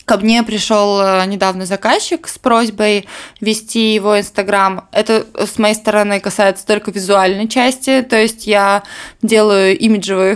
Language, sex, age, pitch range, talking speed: Russian, female, 20-39, 200-245 Hz, 135 wpm